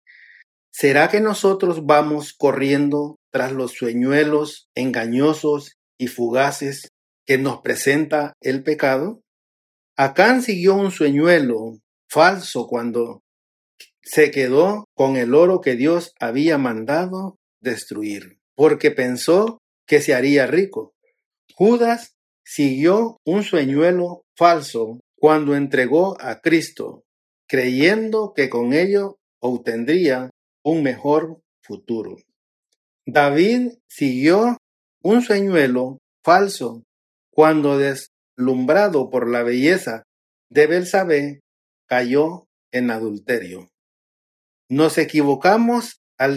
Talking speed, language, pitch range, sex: 95 wpm, Spanish, 130-190 Hz, male